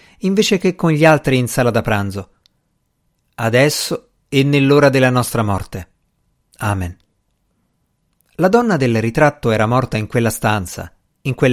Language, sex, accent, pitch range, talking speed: Italian, male, native, 110-160 Hz, 140 wpm